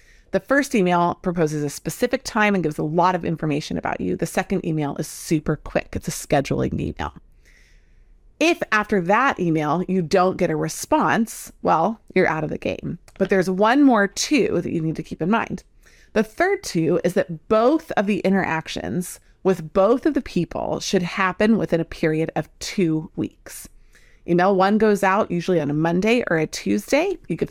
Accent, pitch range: American, 165-210 Hz